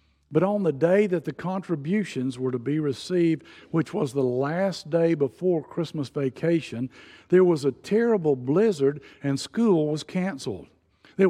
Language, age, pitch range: English, 60-79, 120-170 Hz